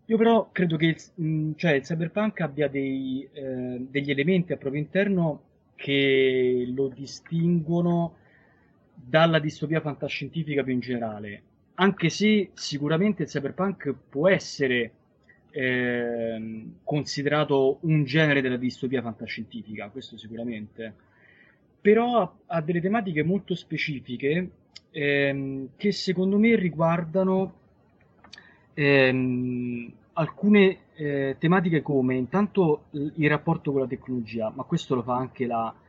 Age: 20-39